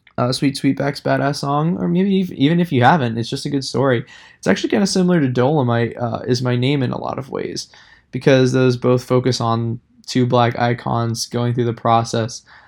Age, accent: 20-39, American